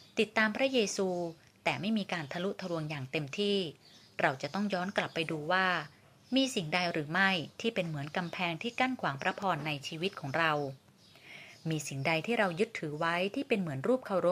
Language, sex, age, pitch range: Thai, female, 20-39, 155-205 Hz